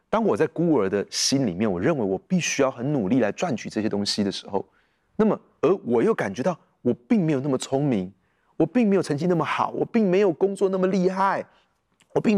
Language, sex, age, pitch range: Chinese, male, 30-49, 135-210 Hz